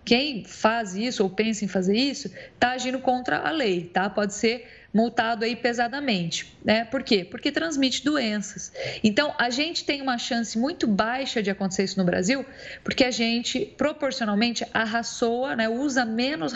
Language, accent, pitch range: Portuguese, Brazilian, 210-255 Hz